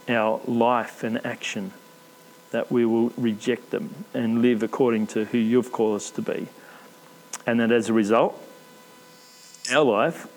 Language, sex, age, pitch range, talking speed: English, male, 40-59, 115-125 Hz, 150 wpm